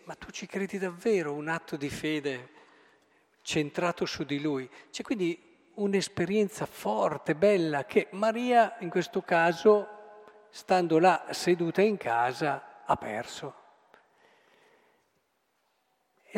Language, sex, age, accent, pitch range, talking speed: Italian, male, 50-69, native, 140-205 Hz, 115 wpm